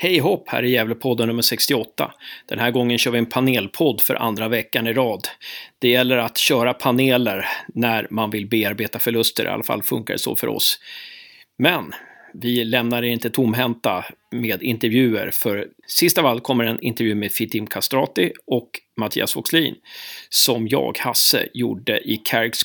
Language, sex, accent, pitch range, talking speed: Swedish, male, native, 115-155 Hz, 170 wpm